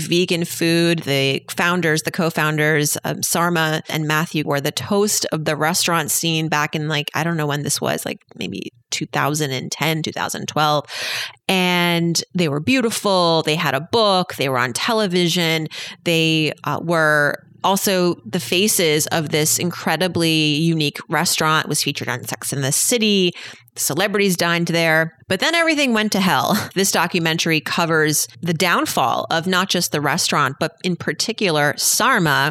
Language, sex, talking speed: English, female, 155 wpm